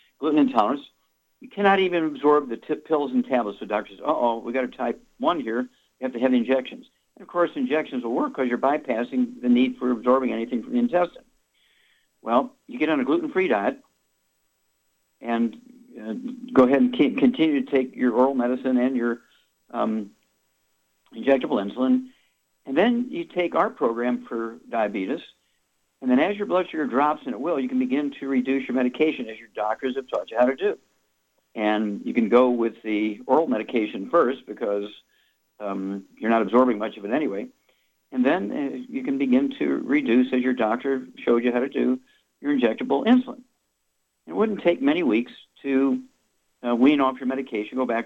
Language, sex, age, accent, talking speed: English, male, 60-79, American, 190 wpm